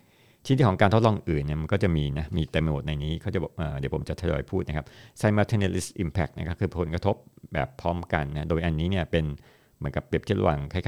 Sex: male